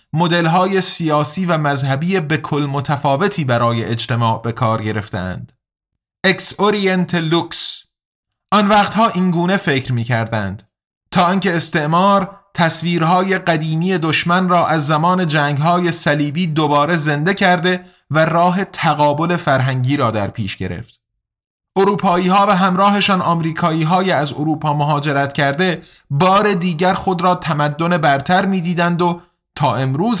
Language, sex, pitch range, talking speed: Persian, male, 140-180 Hz, 120 wpm